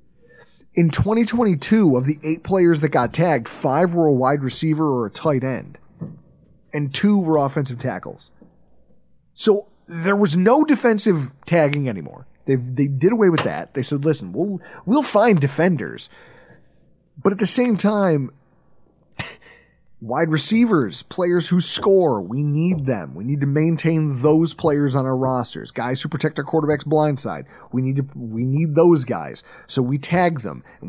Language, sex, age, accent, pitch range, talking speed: English, male, 30-49, American, 140-205 Hz, 160 wpm